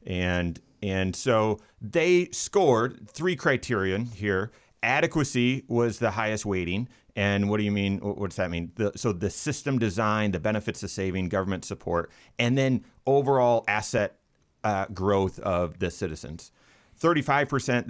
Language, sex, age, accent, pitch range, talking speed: English, male, 30-49, American, 90-115 Hz, 145 wpm